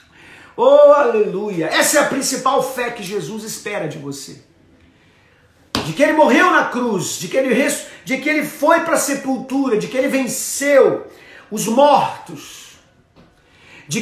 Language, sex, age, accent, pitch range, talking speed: Portuguese, male, 40-59, Brazilian, 180-275 Hz, 155 wpm